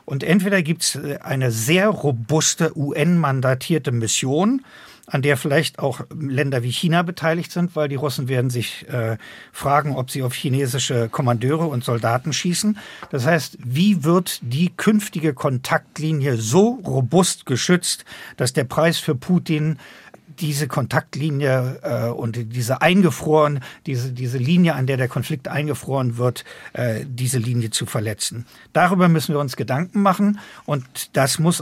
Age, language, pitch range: 50-69, German, 130-170 Hz